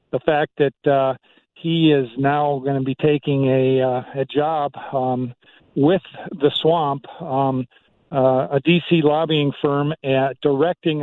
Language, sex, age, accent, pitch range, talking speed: English, male, 50-69, American, 135-150 Hz, 145 wpm